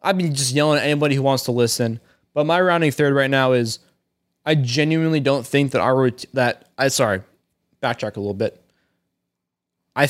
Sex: male